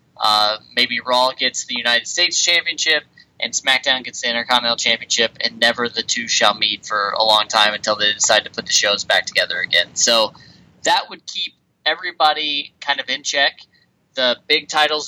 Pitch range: 120-150 Hz